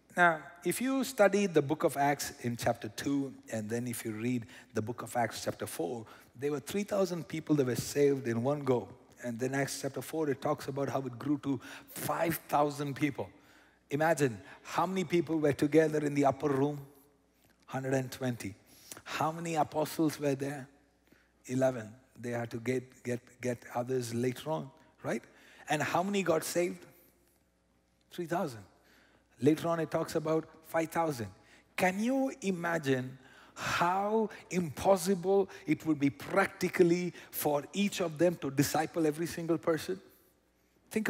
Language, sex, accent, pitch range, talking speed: English, male, Indian, 135-180 Hz, 150 wpm